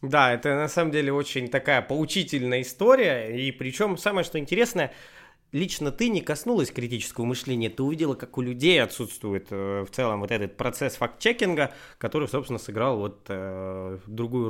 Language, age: Russian, 20-39